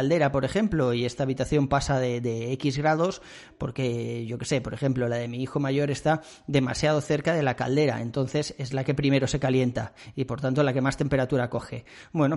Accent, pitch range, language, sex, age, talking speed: Spanish, 130-150 Hz, Spanish, male, 30-49, 215 wpm